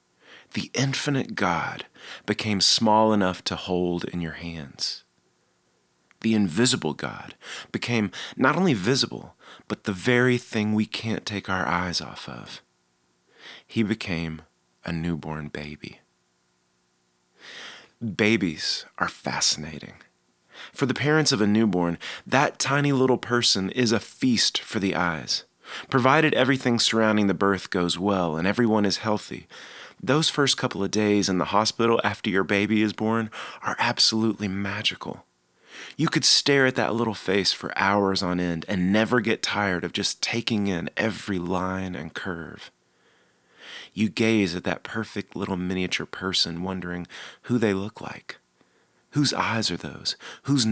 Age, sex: 30-49, male